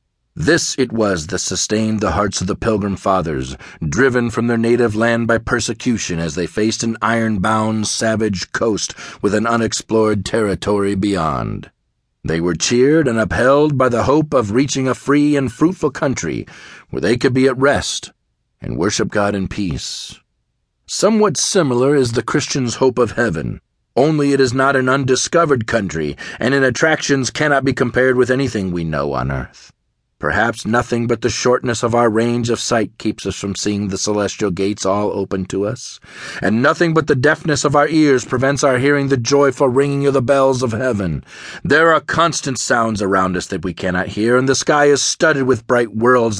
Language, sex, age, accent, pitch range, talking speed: English, male, 40-59, American, 100-135 Hz, 180 wpm